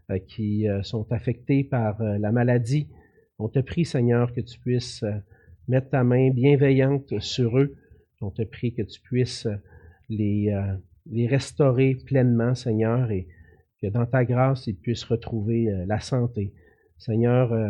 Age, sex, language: 40-59, male, French